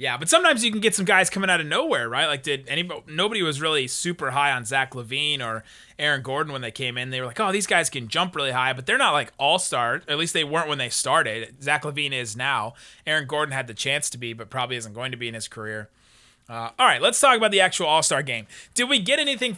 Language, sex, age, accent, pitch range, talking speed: English, male, 30-49, American, 130-170 Hz, 265 wpm